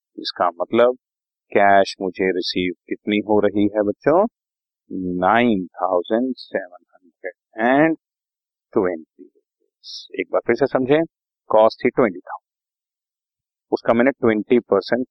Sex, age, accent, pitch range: male, 40-59, native, 100-160 Hz